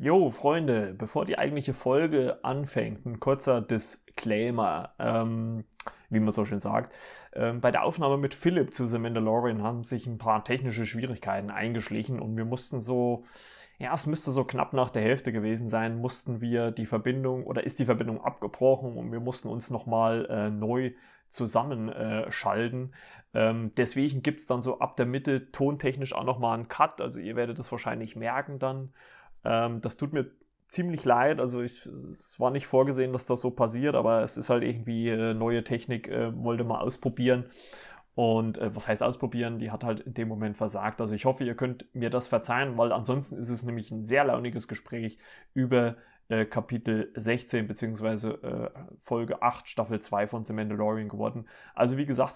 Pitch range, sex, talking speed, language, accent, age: 110-130 Hz, male, 175 wpm, German, German, 30-49